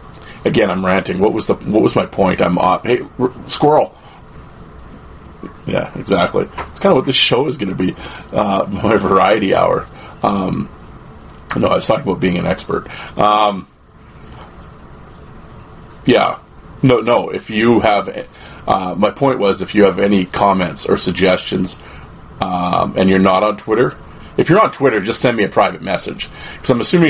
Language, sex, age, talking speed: English, male, 30-49, 170 wpm